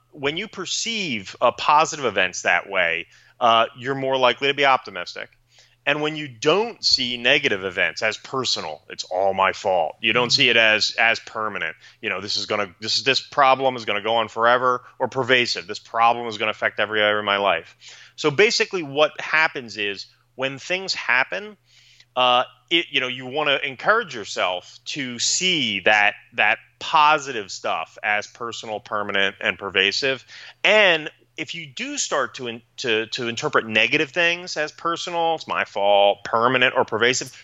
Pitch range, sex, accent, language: 110-150 Hz, male, American, English